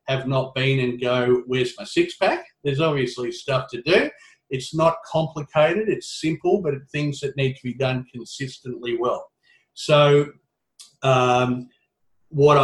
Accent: Australian